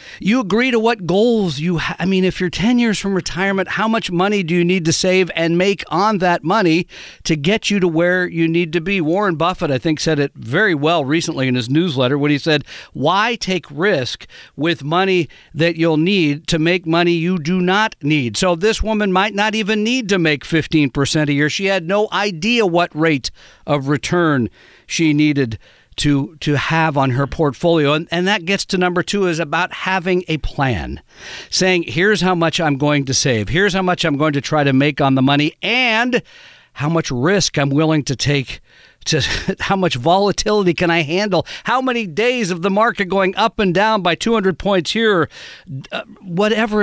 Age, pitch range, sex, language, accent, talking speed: 50-69, 155-195 Hz, male, English, American, 200 wpm